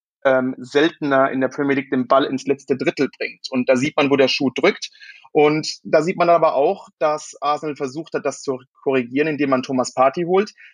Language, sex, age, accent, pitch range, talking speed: German, male, 30-49, German, 135-155 Hz, 205 wpm